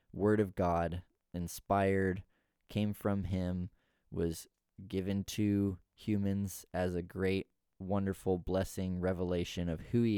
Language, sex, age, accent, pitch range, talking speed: English, male, 20-39, American, 90-110 Hz, 120 wpm